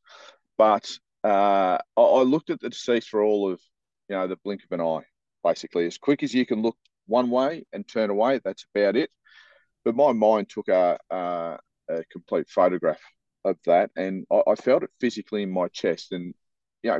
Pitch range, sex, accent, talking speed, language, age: 90-115 Hz, male, Australian, 195 wpm, English, 40-59